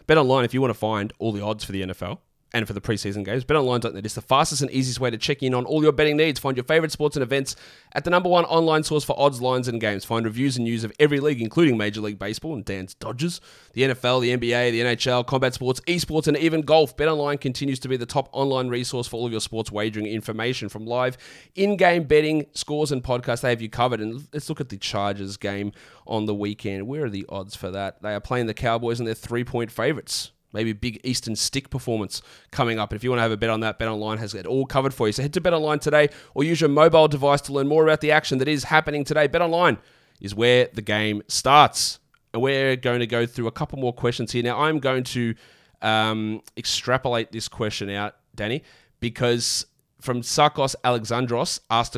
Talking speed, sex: 235 wpm, male